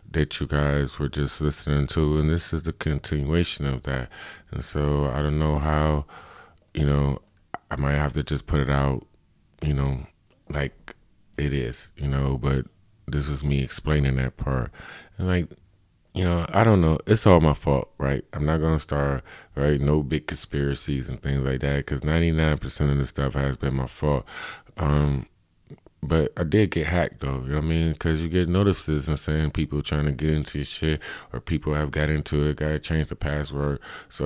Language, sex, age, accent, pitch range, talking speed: English, male, 20-39, American, 70-80 Hz, 200 wpm